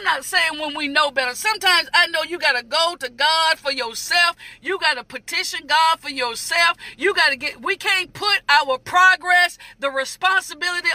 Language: English